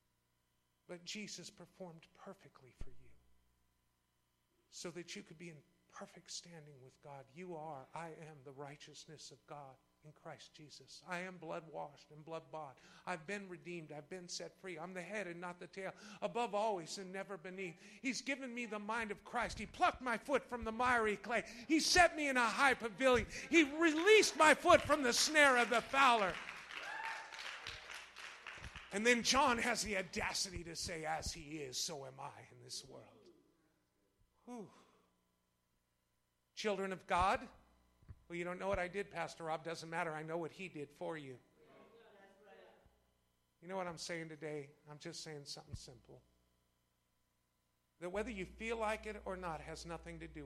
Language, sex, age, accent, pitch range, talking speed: English, male, 50-69, American, 135-210 Hz, 175 wpm